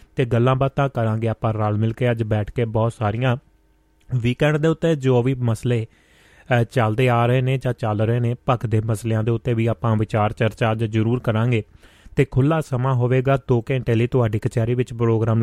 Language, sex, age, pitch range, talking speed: Punjabi, male, 30-49, 110-125 Hz, 190 wpm